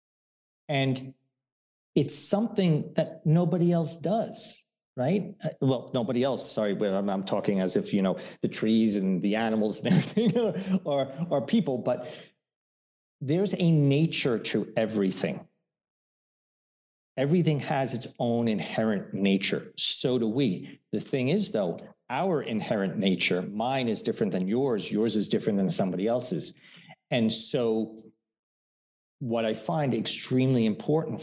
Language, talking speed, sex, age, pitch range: English, 135 wpm, male, 50-69, 110-165 Hz